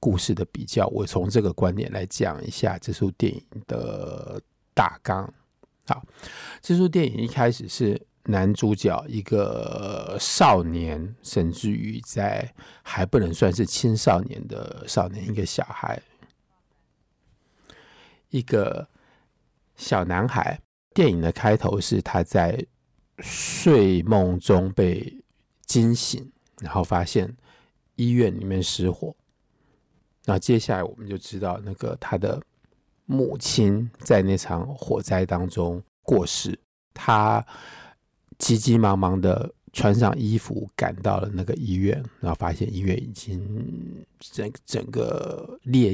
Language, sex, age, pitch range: Chinese, male, 50-69, 90-115 Hz